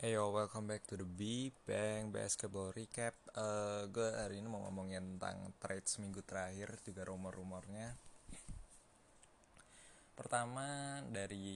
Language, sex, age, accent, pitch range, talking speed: Indonesian, male, 20-39, native, 100-115 Hz, 120 wpm